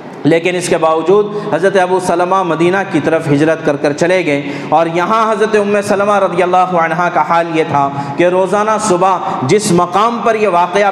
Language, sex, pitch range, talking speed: Urdu, male, 165-195 Hz, 190 wpm